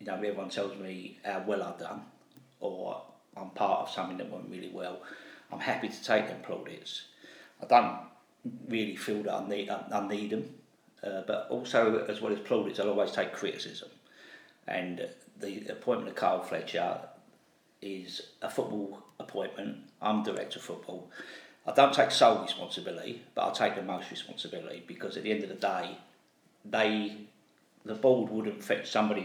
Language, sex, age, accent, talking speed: English, male, 50-69, British, 170 wpm